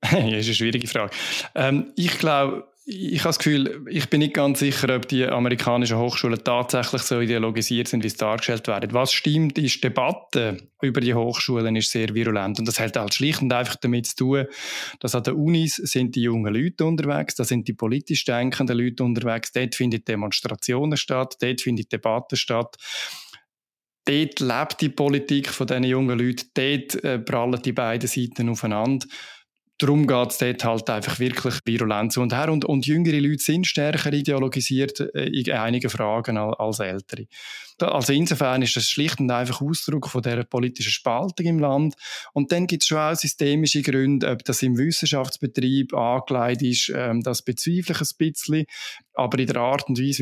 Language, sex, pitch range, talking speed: German, male, 120-145 Hz, 180 wpm